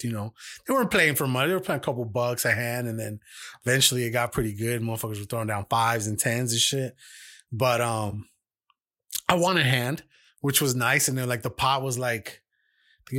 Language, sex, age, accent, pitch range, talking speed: English, male, 20-39, American, 115-145 Hz, 225 wpm